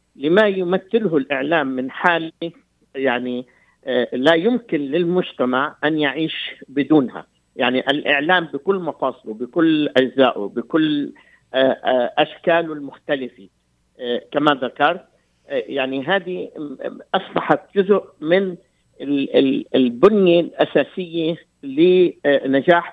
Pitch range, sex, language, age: 135-175 Hz, male, Arabic, 50-69